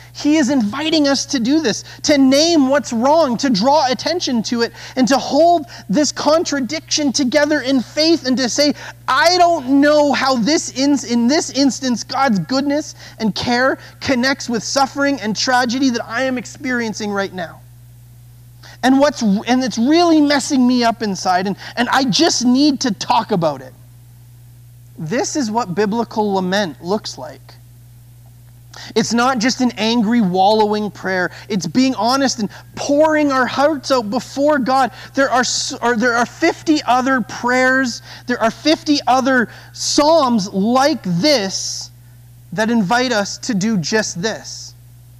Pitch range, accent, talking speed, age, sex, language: 175-270 Hz, American, 150 wpm, 30-49, male, English